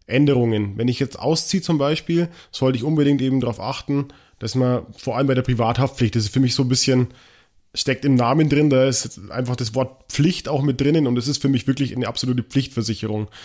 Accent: German